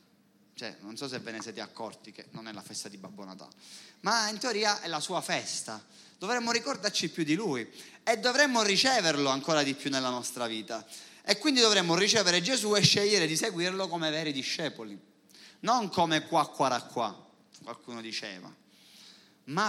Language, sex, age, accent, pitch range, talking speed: Italian, male, 30-49, native, 125-185 Hz, 175 wpm